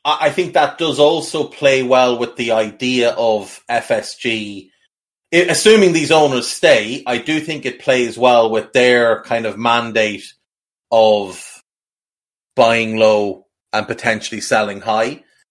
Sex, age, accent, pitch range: male, 30-49, Irish, 110-130 Hz